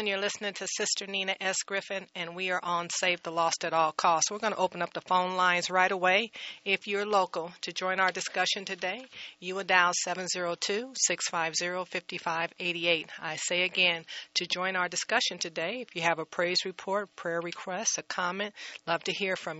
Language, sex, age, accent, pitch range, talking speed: English, female, 40-59, American, 165-185 Hz, 185 wpm